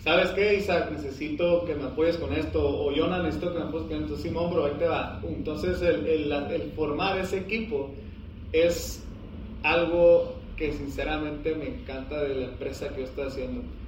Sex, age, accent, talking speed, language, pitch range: male, 30-49, Mexican, 180 wpm, Spanish, 135-170 Hz